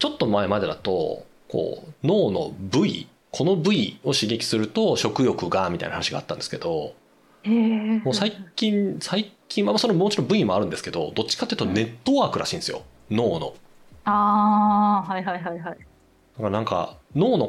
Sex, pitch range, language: male, 135-205 Hz, Japanese